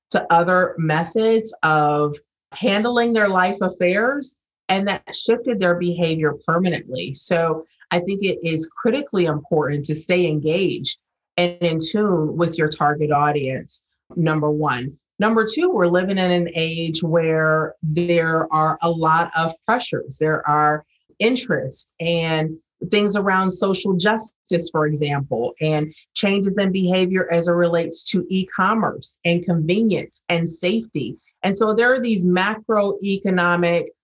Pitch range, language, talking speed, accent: 160-195 Hz, English, 135 wpm, American